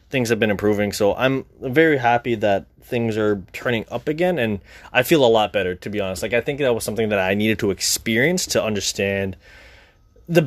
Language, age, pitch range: English, 20-39, 95-145 Hz